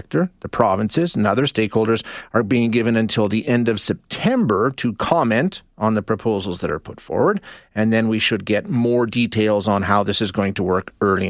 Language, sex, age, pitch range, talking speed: English, male, 40-59, 105-130 Hz, 195 wpm